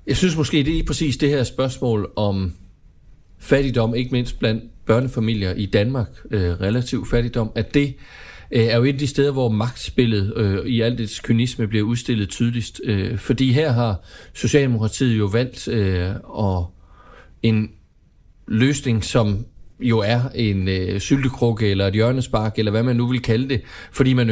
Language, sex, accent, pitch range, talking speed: Danish, male, native, 105-130 Hz, 170 wpm